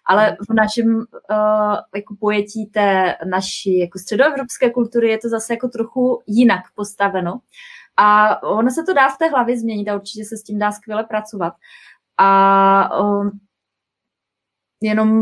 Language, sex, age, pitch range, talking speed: Czech, female, 20-39, 200-235 Hz, 130 wpm